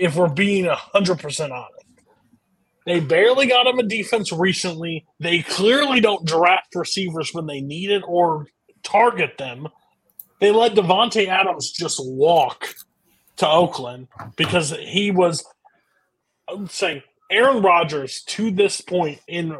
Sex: male